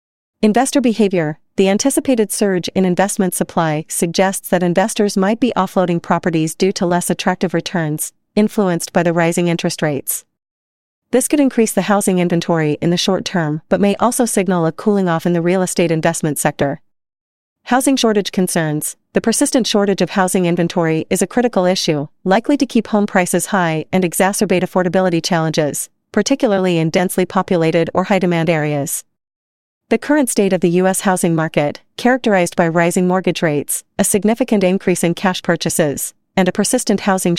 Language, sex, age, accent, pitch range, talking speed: English, female, 40-59, American, 170-205 Hz, 165 wpm